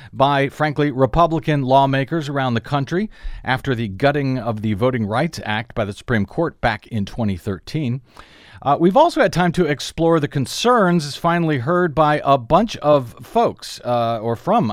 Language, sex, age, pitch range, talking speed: English, male, 50-69, 130-170 Hz, 165 wpm